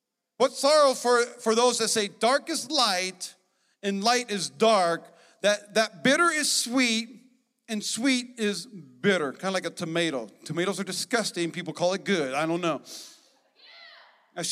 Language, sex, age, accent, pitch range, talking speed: English, male, 40-59, American, 185-255 Hz, 160 wpm